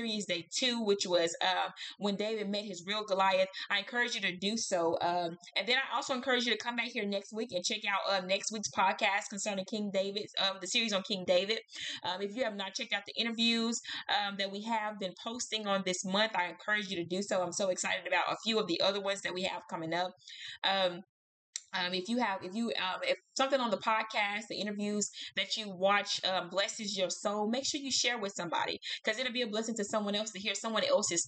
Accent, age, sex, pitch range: American, 20-39, female, 175-210 Hz